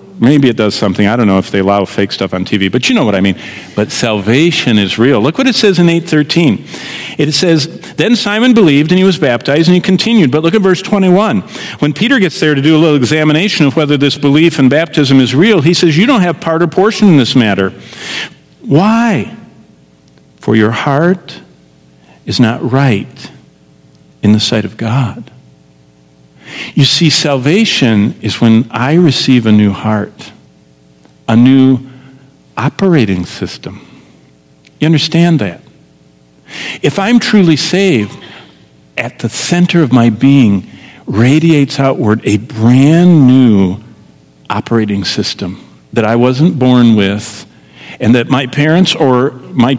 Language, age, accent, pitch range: English, 50-69, American, 105-160 Hz